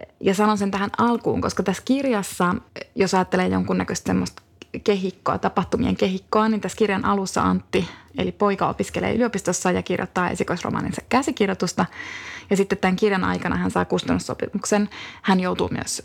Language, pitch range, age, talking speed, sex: Finnish, 185-220 Hz, 20-39, 145 wpm, female